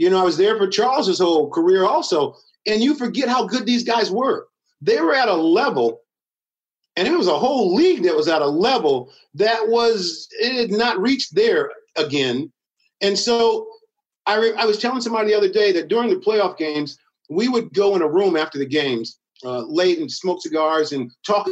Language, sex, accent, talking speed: English, male, American, 205 wpm